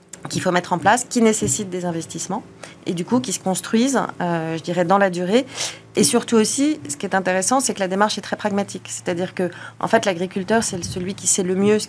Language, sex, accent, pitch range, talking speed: French, female, French, 175-205 Hz, 235 wpm